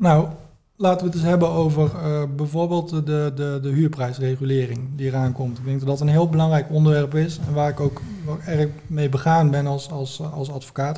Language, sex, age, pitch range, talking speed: Dutch, male, 20-39, 140-165 Hz, 200 wpm